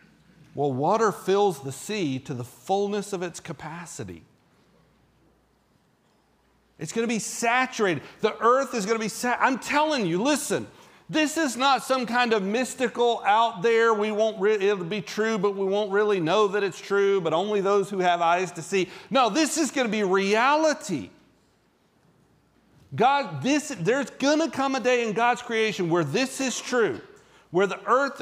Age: 40-59